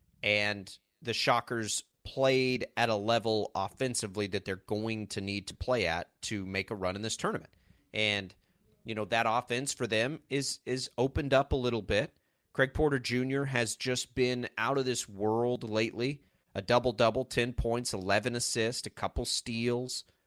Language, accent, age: English, American, 30-49